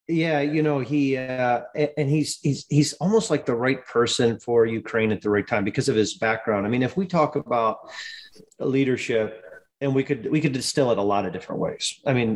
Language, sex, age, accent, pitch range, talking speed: English, male, 40-59, American, 115-150 Hz, 220 wpm